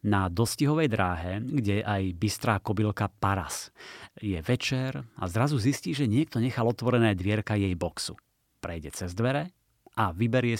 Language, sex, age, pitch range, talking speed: Slovak, male, 30-49, 100-120 Hz, 140 wpm